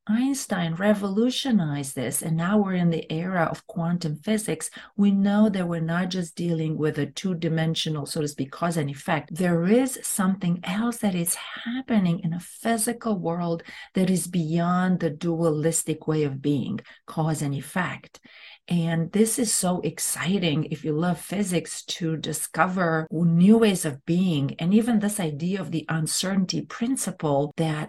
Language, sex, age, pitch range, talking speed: English, female, 40-59, 160-205 Hz, 160 wpm